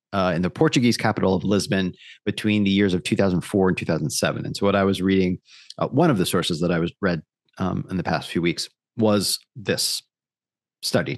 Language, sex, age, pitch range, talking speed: English, male, 40-59, 95-115 Hz, 205 wpm